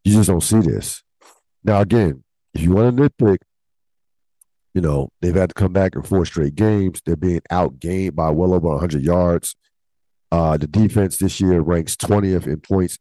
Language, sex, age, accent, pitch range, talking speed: English, male, 50-69, American, 75-95 Hz, 185 wpm